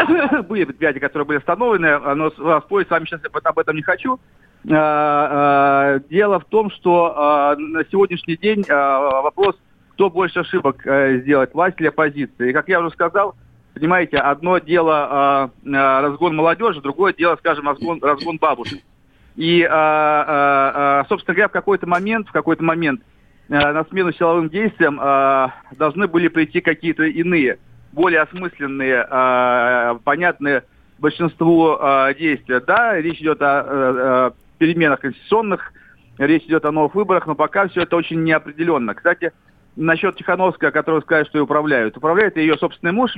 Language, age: Russian, 40-59